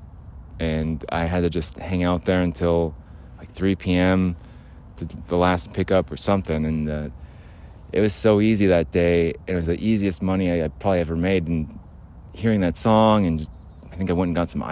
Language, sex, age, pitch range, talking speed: English, male, 30-49, 80-100 Hz, 195 wpm